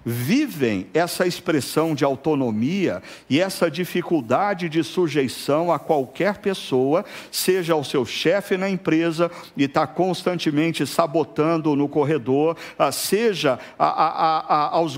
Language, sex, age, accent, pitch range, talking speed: Portuguese, male, 60-79, Brazilian, 155-210 Hz, 110 wpm